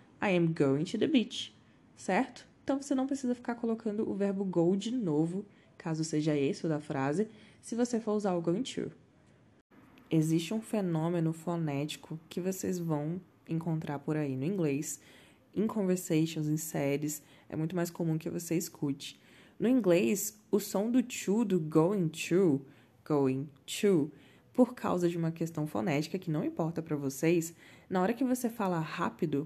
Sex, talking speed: female, 165 wpm